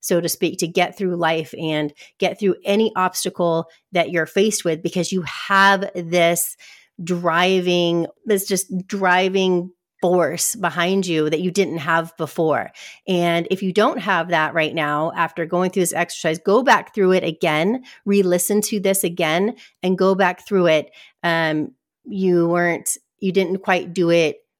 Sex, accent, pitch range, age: female, American, 170-200 Hz, 30-49